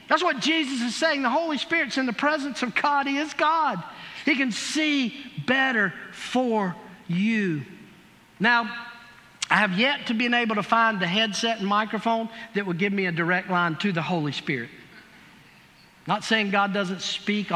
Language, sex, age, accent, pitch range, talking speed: English, male, 50-69, American, 195-255 Hz, 175 wpm